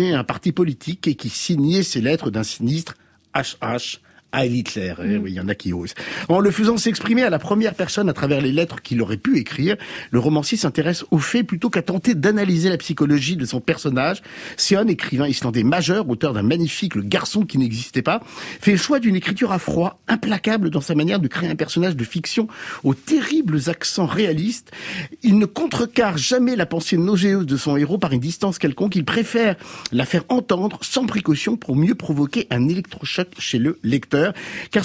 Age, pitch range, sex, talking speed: 50-69, 145-210 Hz, male, 195 wpm